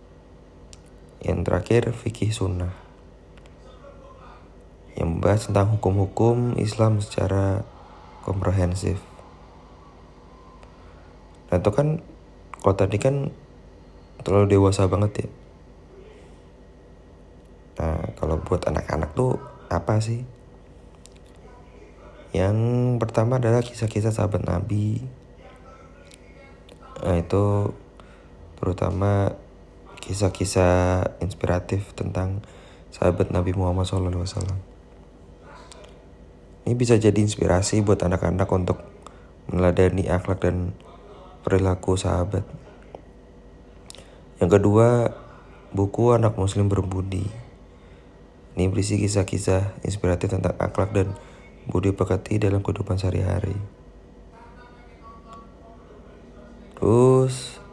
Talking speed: 80 wpm